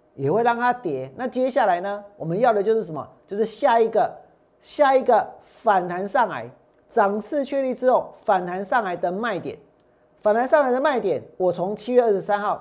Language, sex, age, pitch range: Chinese, male, 40-59, 200-255 Hz